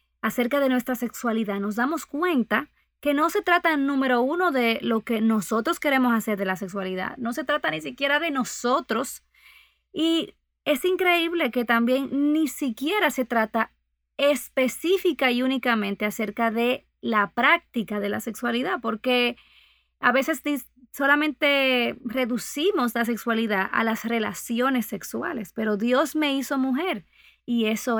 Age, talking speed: 20-39, 145 wpm